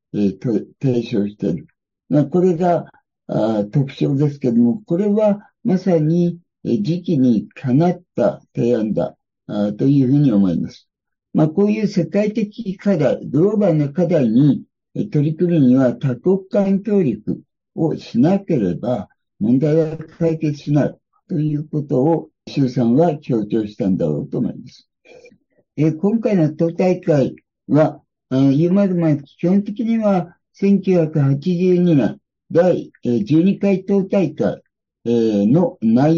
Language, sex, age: Japanese, male, 60-79